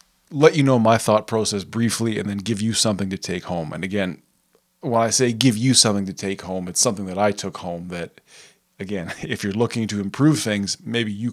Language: English